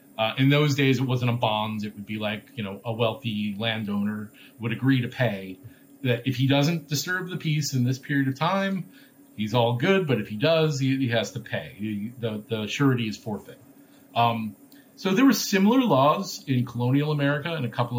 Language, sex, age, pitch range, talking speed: English, male, 40-59, 110-140 Hz, 205 wpm